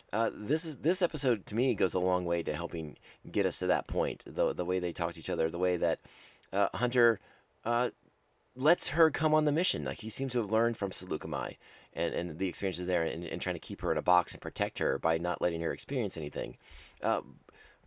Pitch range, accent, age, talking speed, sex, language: 90-125 Hz, American, 30-49, 235 wpm, male, English